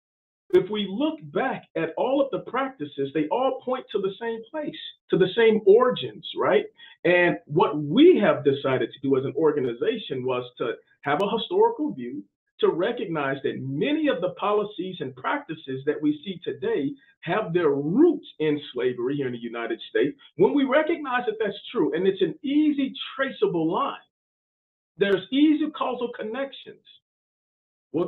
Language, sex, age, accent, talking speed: English, male, 50-69, American, 165 wpm